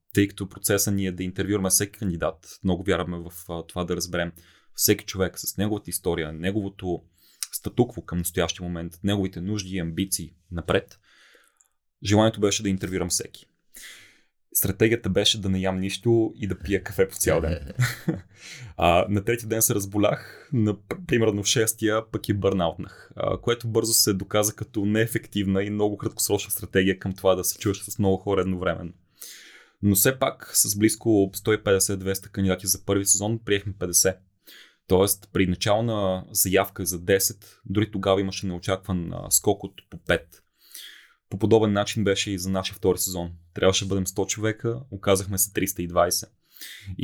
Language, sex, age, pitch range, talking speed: Bulgarian, male, 20-39, 95-105 Hz, 160 wpm